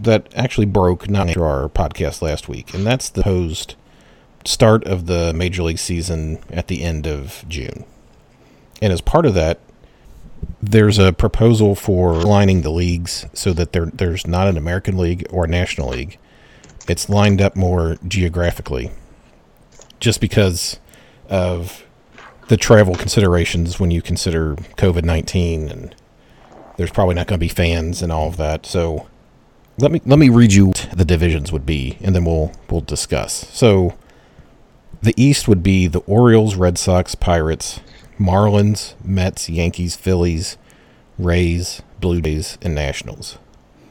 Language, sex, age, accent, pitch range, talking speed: English, male, 40-59, American, 85-100 Hz, 150 wpm